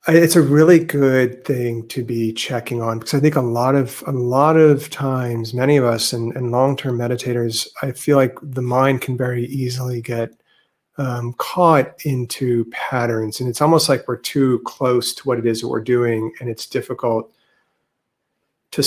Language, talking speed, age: English, 180 wpm, 40-59